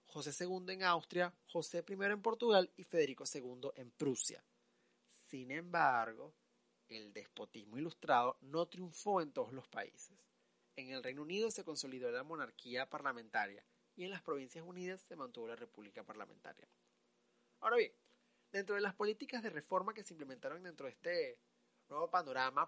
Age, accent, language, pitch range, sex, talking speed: 30-49, Argentinian, Spanish, 140-220 Hz, male, 155 wpm